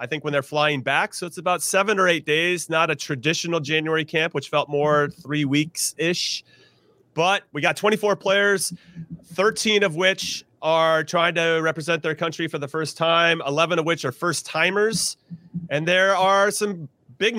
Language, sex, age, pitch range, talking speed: English, male, 30-49, 145-170 Hz, 185 wpm